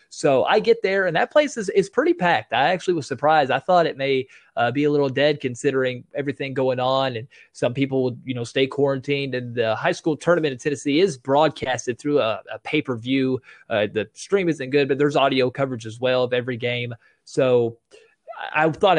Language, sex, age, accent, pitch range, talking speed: English, male, 20-39, American, 125-155 Hz, 205 wpm